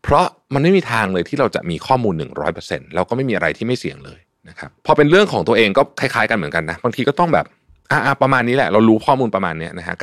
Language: Thai